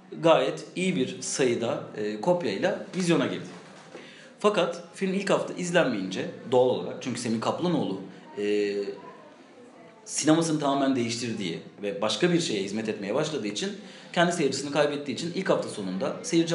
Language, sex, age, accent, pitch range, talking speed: Turkish, male, 40-59, native, 120-170 Hz, 140 wpm